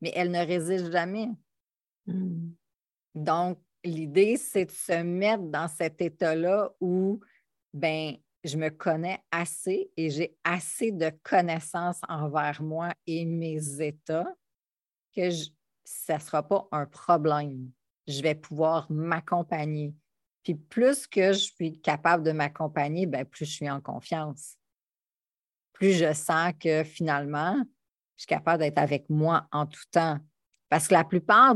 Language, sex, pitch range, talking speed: French, female, 150-175 Hz, 140 wpm